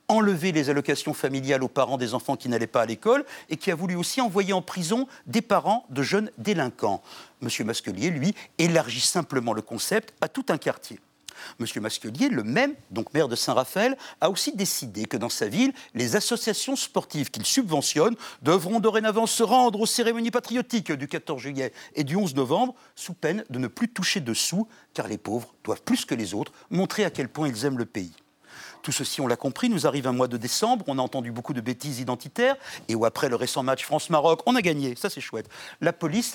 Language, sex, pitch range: French, male, 135-225 Hz